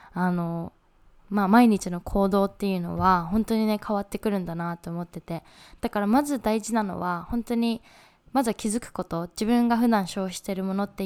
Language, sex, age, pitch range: Japanese, female, 20-39, 185-225 Hz